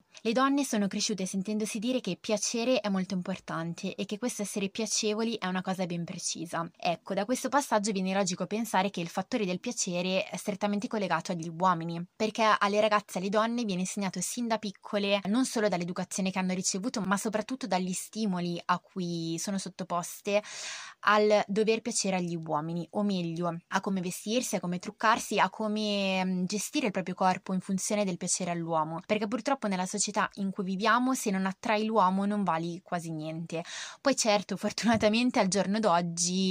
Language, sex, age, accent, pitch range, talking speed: Italian, female, 20-39, native, 180-215 Hz, 180 wpm